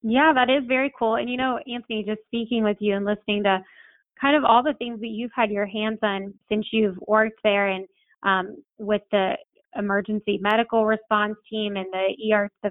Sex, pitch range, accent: female, 195-225 Hz, American